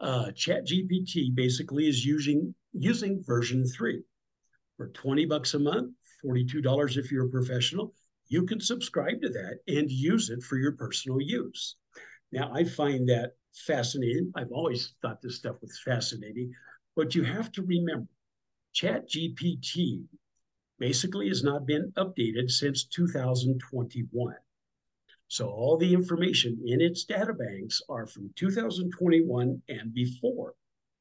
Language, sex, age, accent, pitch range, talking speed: English, male, 60-79, American, 125-165 Hz, 140 wpm